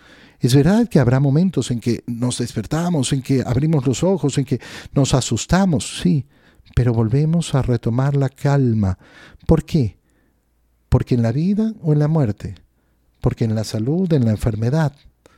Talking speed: 165 wpm